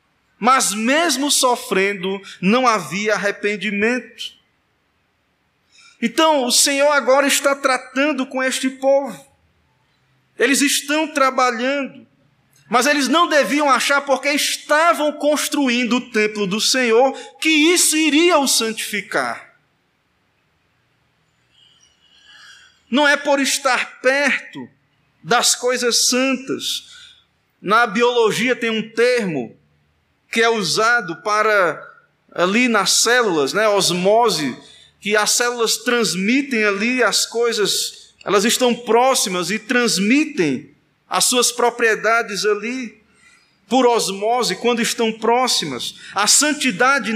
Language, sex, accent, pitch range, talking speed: Portuguese, male, Brazilian, 225-270 Hz, 100 wpm